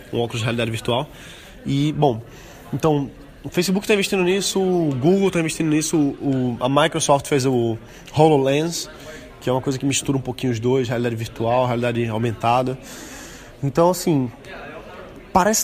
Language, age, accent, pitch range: Portuguese, 20-39, Brazilian, 120-150 Hz